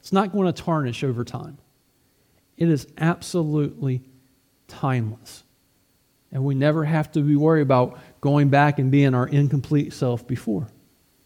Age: 40-59